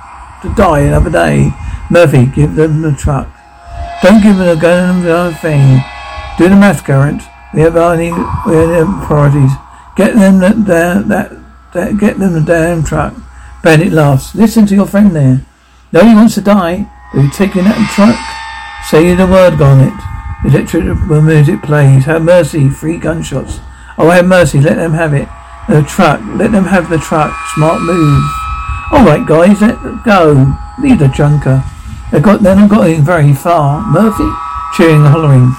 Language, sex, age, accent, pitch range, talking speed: English, male, 60-79, British, 140-175 Hz, 175 wpm